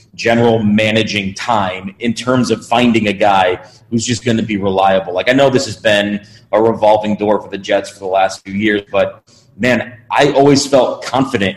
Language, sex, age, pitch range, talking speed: English, male, 30-49, 105-120 Hz, 195 wpm